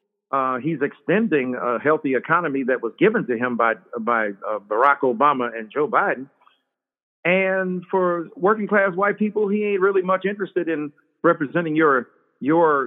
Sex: male